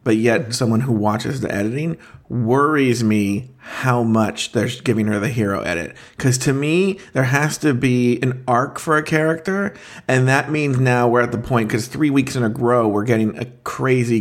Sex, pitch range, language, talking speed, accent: male, 115-145 Hz, English, 200 wpm, American